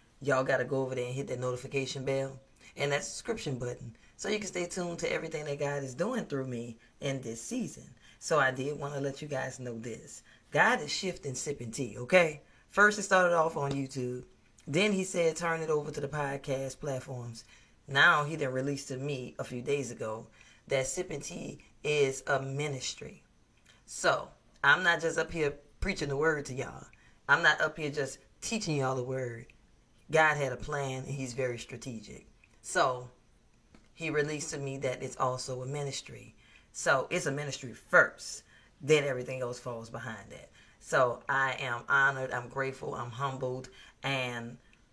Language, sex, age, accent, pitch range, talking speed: English, female, 20-39, American, 125-145 Hz, 185 wpm